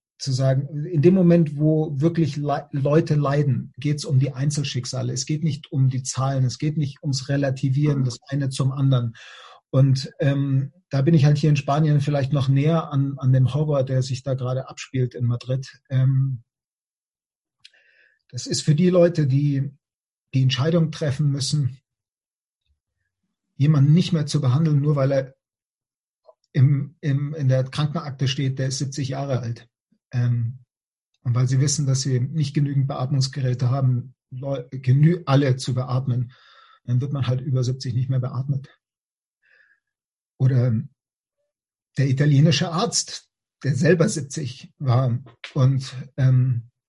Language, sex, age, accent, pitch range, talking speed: English, male, 40-59, German, 130-150 Hz, 145 wpm